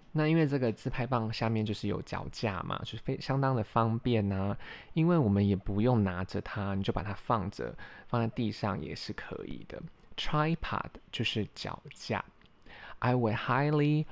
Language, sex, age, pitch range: Chinese, male, 20-39, 105-135 Hz